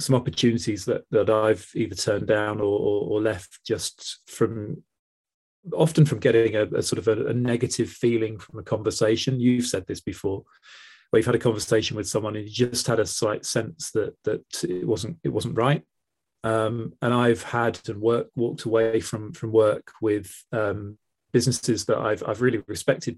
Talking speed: 185 wpm